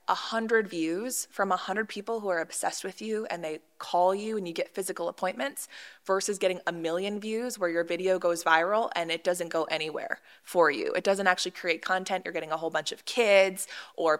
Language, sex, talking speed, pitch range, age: English, female, 215 wpm, 175-220 Hz, 20-39